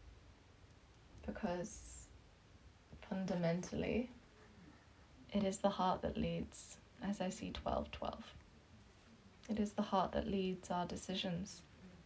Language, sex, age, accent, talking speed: English, female, 20-39, British, 100 wpm